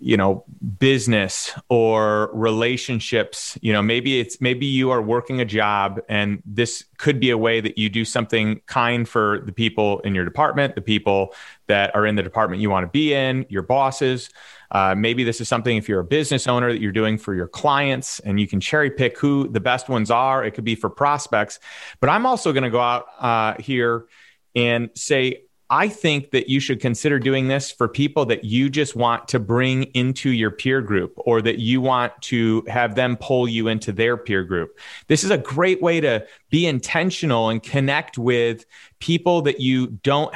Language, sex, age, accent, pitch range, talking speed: English, male, 30-49, American, 115-135 Hz, 200 wpm